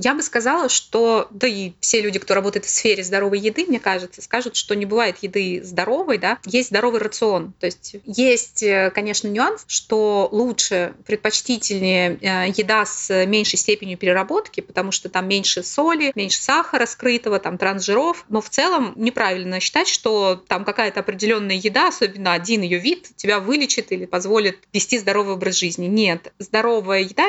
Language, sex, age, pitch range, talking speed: Russian, female, 20-39, 195-235 Hz, 165 wpm